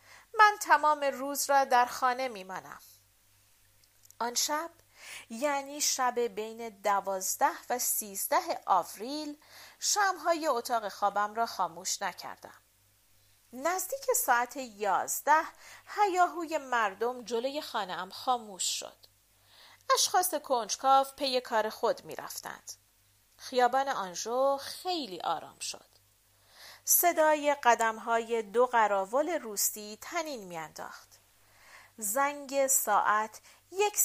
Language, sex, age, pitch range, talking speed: Persian, female, 40-59, 205-280 Hz, 90 wpm